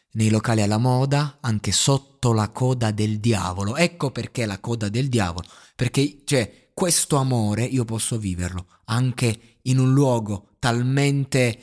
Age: 30-49